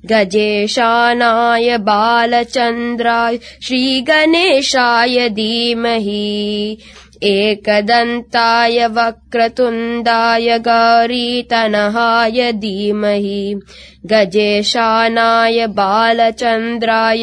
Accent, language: native, Tamil